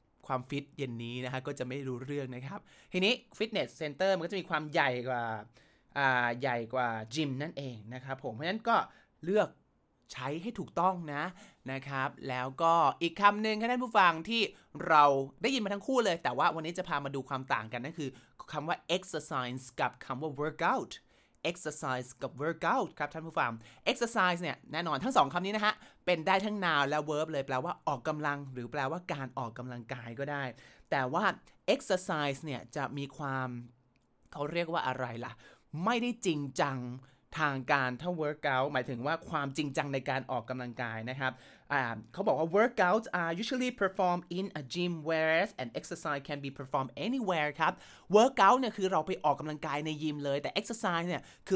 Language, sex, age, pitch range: Thai, male, 20-39, 130-180 Hz